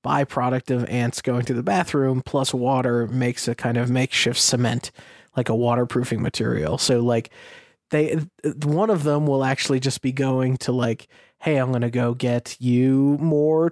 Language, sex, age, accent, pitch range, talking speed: English, male, 20-39, American, 125-145 Hz, 170 wpm